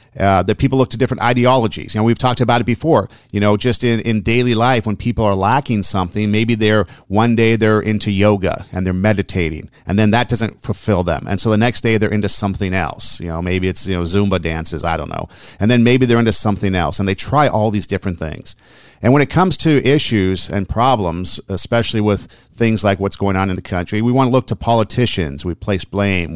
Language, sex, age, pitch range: English, male, 50-69, 95-120 Hz